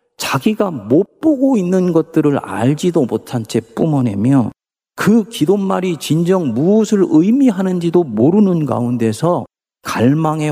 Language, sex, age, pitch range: Korean, male, 40-59, 120-185 Hz